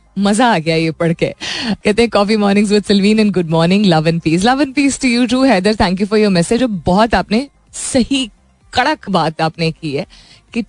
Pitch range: 170-245 Hz